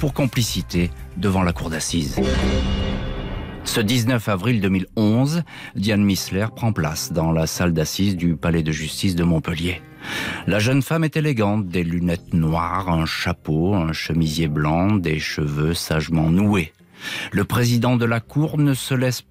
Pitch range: 85-120 Hz